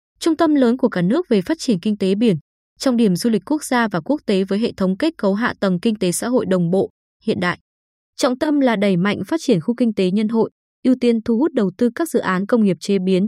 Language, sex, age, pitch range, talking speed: Vietnamese, female, 20-39, 195-250 Hz, 275 wpm